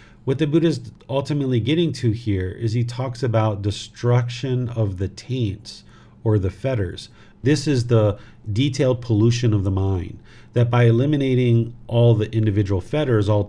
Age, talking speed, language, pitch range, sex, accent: 40-59, 155 wpm, English, 105-120 Hz, male, American